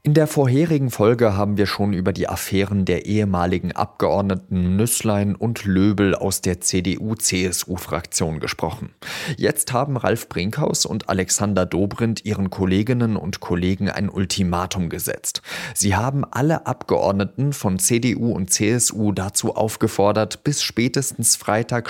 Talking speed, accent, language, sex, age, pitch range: 130 wpm, German, German, male, 30-49, 95-125 Hz